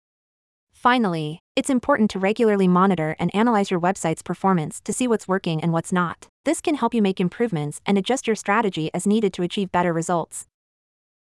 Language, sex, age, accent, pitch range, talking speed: English, female, 20-39, American, 175-220 Hz, 180 wpm